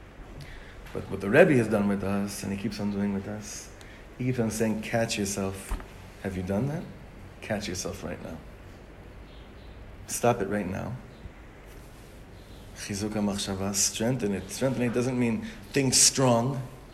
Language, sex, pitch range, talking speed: English, male, 100-130 Hz, 150 wpm